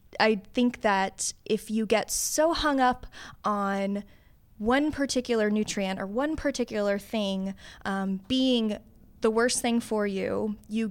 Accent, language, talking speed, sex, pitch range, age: American, English, 140 wpm, female, 200-250 Hz, 20-39